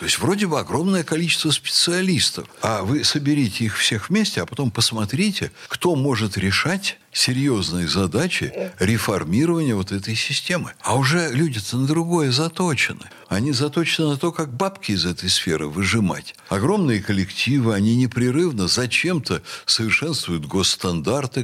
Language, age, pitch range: Russian, 60-79, 105-170 Hz